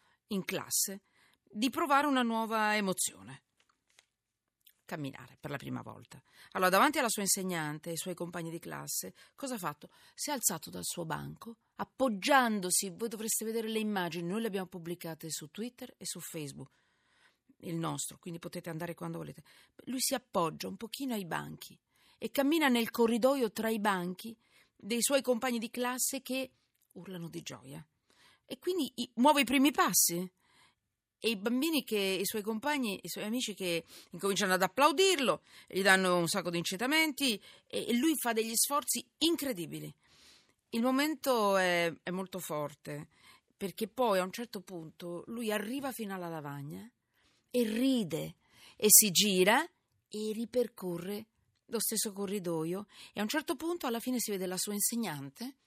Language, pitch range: Italian, 175-245 Hz